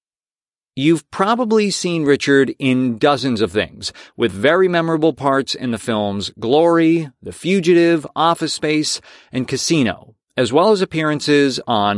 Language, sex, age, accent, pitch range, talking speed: English, male, 40-59, American, 125-165 Hz, 135 wpm